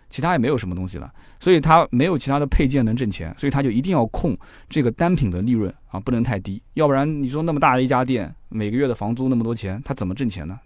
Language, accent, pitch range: Chinese, native, 110-150 Hz